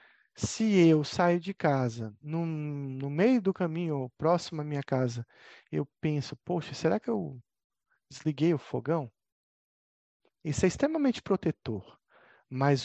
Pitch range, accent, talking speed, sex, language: 130-170 Hz, Brazilian, 135 wpm, male, Italian